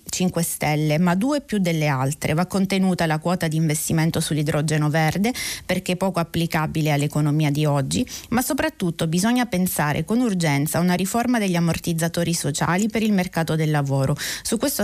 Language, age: Italian, 30-49